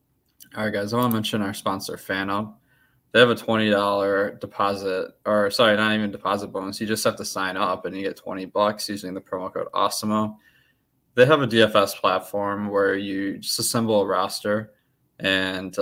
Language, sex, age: English, male, 20-39